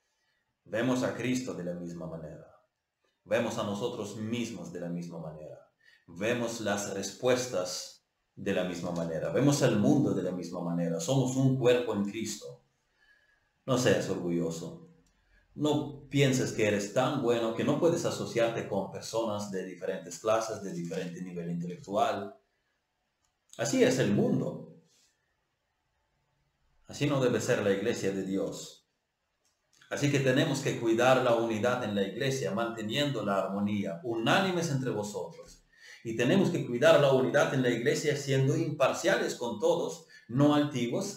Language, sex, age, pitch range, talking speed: Spanish, male, 30-49, 95-135 Hz, 145 wpm